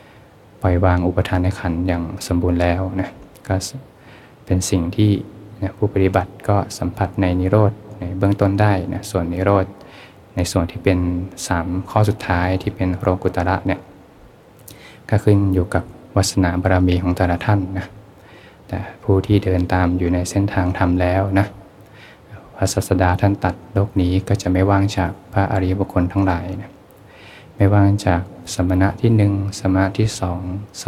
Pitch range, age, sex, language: 90-100 Hz, 20-39, male, Thai